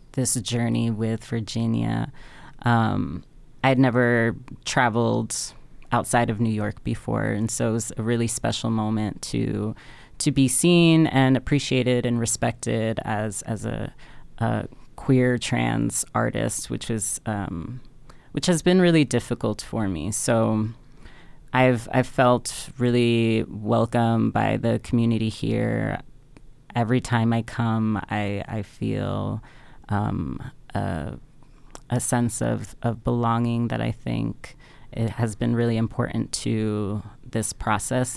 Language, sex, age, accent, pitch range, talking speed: English, female, 20-39, American, 110-130 Hz, 125 wpm